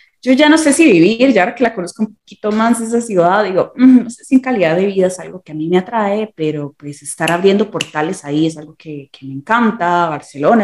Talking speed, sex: 245 wpm, female